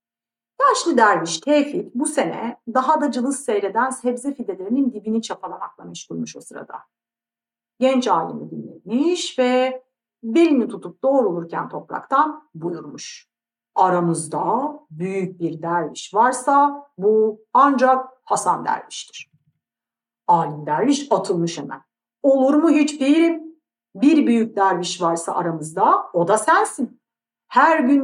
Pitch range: 185-280 Hz